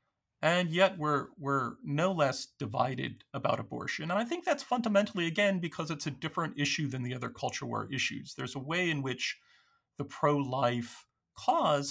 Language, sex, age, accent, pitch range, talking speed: English, male, 40-59, American, 125-170 Hz, 170 wpm